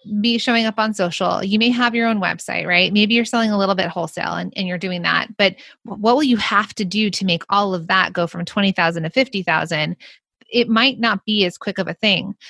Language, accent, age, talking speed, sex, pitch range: English, American, 30-49, 240 wpm, female, 180-230 Hz